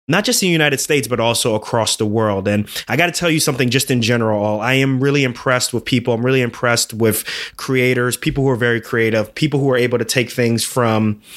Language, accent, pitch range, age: English, American, 115-135 Hz, 20-39